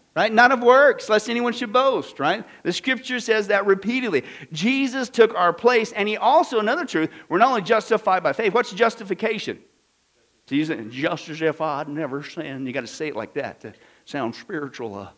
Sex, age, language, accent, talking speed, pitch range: male, 50-69, English, American, 200 wpm, 175-260 Hz